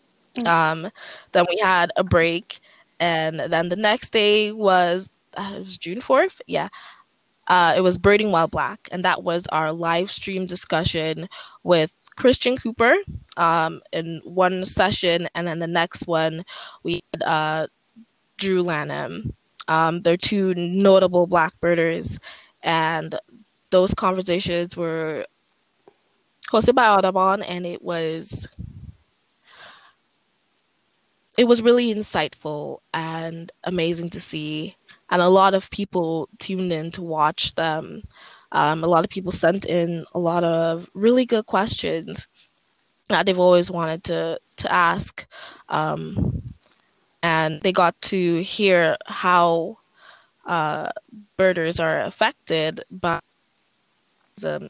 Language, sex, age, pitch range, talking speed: English, female, 20-39, 165-190 Hz, 125 wpm